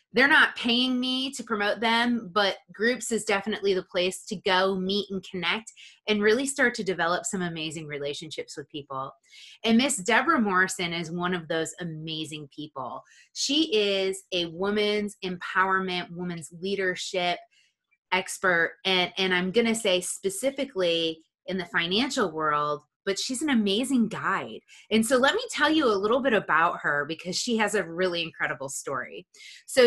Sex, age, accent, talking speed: female, 20-39, American, 165 wpm